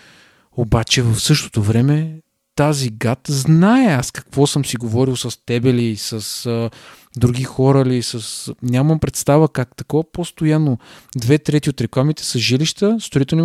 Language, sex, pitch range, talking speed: Bulgarian, male, 120-155 Hz, 145 wpm